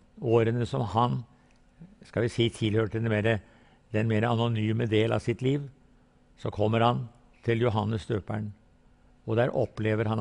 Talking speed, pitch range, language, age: 165 wpm, 105-125 Hz, English, 60-79